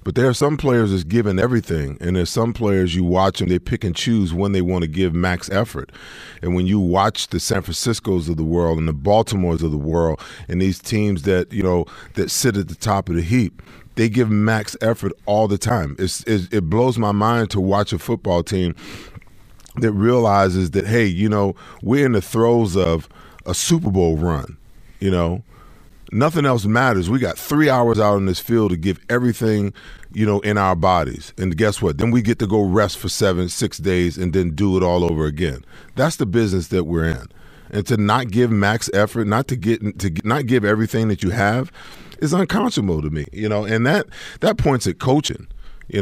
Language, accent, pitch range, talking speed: English, American, 90-115 Hz, 215 wpm